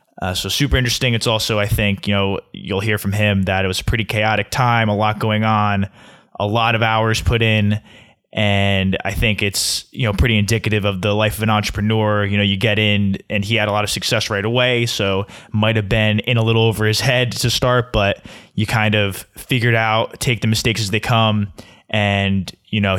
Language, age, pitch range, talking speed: English, 20-39, 100-110 Hz, 225 wpm